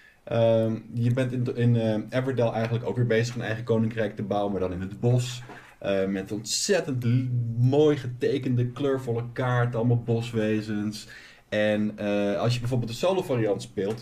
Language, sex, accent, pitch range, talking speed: Dutch, male, Dutch, 105-130 Hz, 165 wpm